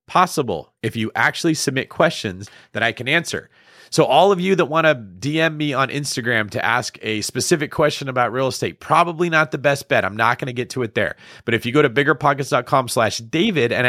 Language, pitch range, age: English, 105-140 Hz, 30-49